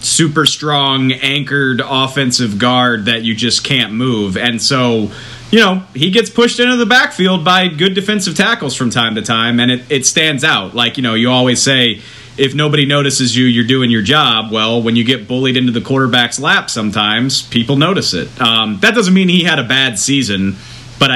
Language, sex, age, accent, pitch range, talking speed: English, male, 30-49, American, 115-140 Hz, 195 wpm